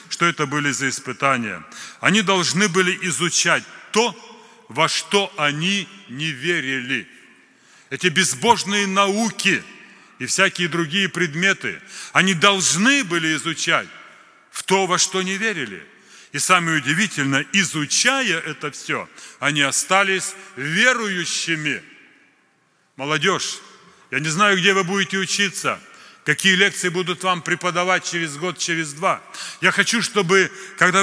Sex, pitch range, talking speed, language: male, 150-195 Hz, 120 wpm, Russian